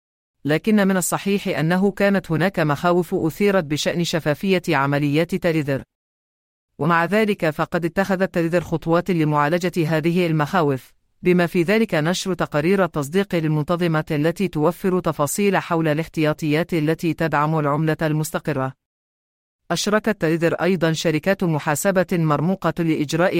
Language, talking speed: English, 115 wpm